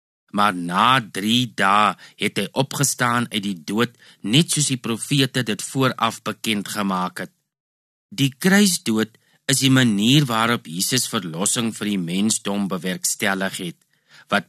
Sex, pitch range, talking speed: male, 100-135 Hz, 135 wpm